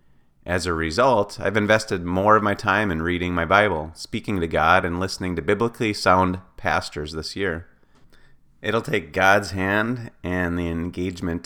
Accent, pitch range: American, 80-100 Hz